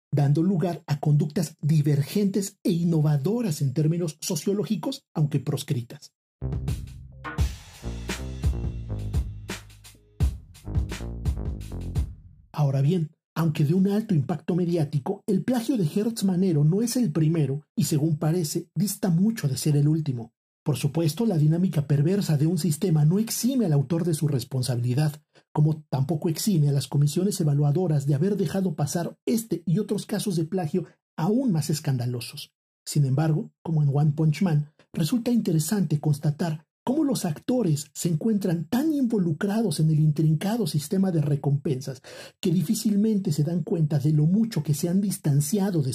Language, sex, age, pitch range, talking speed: Spanish, male, 50-69, 145-190 Hz, 140 wpm